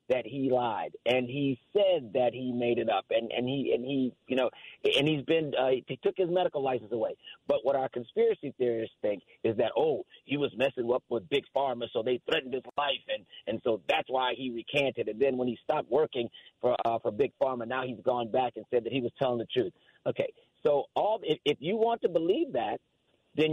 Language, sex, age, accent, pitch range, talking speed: English, male, 40-59, American, 125-175 Hz, 230 wpm